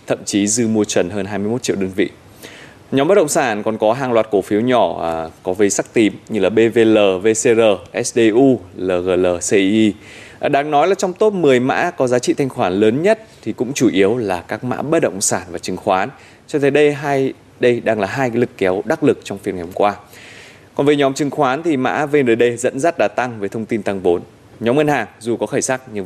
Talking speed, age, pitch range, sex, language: 230 wpm, 20-39, 105-135 Hz, male, Vietnamese